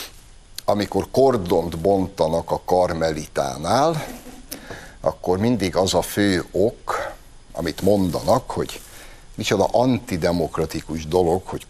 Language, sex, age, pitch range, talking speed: Hungarian, male, 60-79, 90-120 Hz, 90 wpm